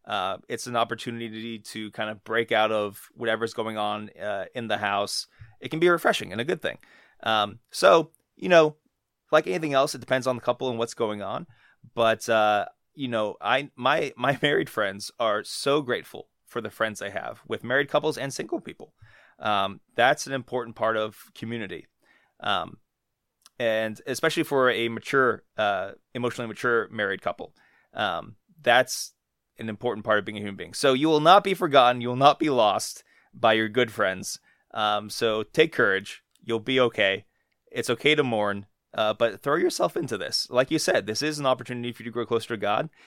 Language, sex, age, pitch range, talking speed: English, male, 30-49, 110-130 Hz, 190 wpm